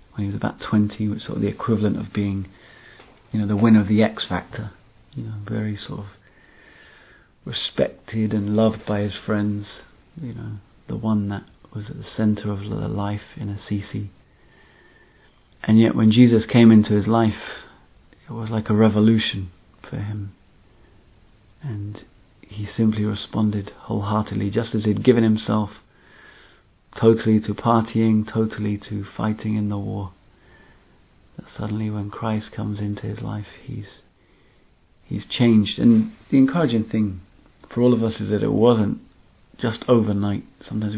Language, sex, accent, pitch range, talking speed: English, male, British, 100-110 Hz, 155 wpm